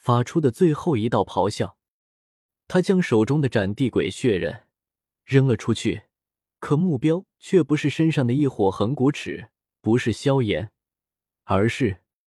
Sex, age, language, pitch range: male, 20-39, Chinese, 105-160 Hz